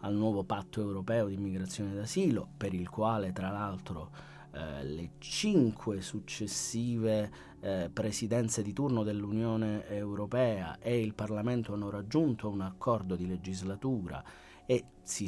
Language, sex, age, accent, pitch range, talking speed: Italian, male, 30-49, native, 100-125 Hz, 135 wpm